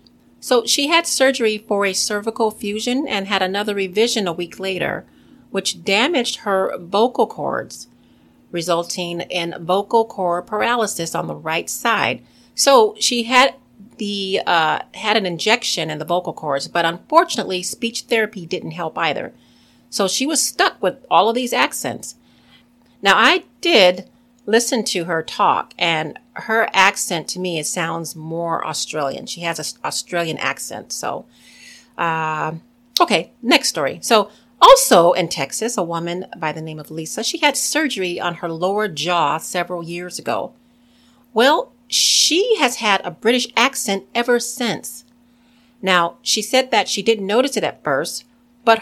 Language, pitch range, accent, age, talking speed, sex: English, 175-240 Hz, American, 40-59, 150 wpm, female